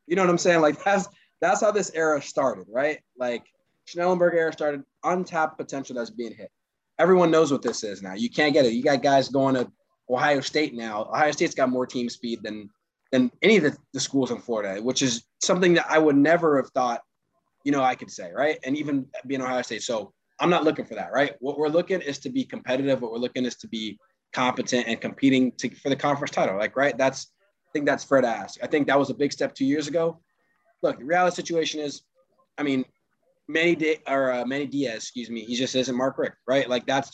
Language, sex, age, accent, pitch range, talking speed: English, male, 20-39, American, 120-155 Hz, 240 wpm